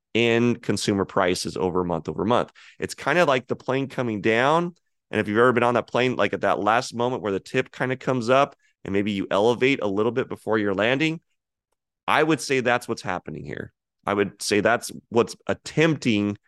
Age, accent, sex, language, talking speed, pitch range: 30-49, American, male, English, 210 wpm, 100-130 Hz